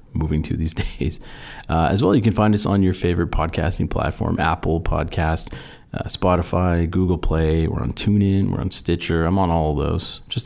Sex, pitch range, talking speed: male, 80-100 Hz, 195 wpm